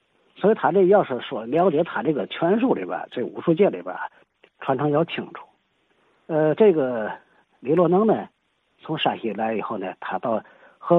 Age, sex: 50-69, male